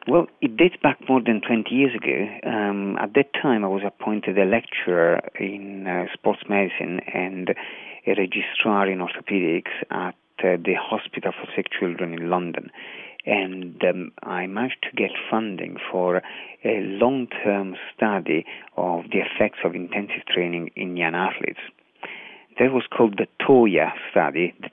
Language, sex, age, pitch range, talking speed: English, male, 40-59, 90-110 Hz, 155 wpm